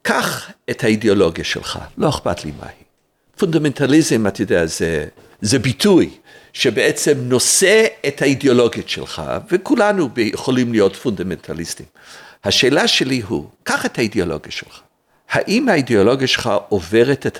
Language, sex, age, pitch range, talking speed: Hebrew, male, 50-69, 110-160 Hz, 115 wpm